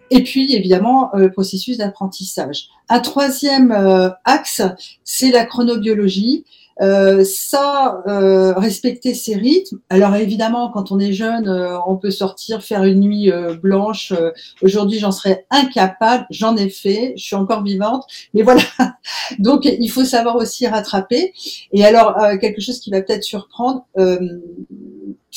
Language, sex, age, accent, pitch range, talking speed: French, female, 50-69, French, 195-245 Hz, 140 wpm